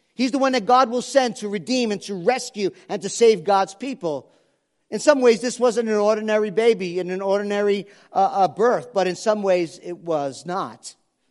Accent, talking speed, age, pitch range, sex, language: American, 200 wpm, 50-69, 195-250 Hz, male, English